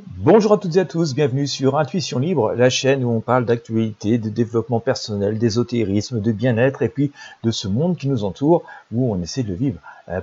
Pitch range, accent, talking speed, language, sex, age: 115-165 Hz, French, 215 wpm, French, male, 40-59